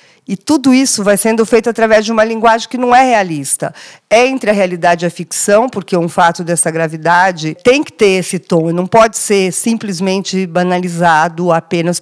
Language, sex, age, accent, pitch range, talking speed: Portuguese, female, 50-69, Brazilian, 175-220 Hz, 185 wpm